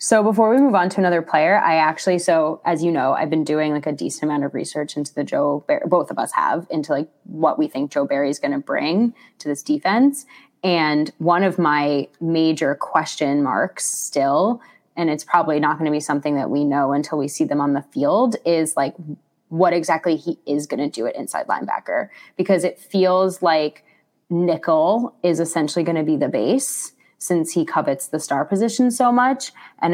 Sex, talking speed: female, 205 wpm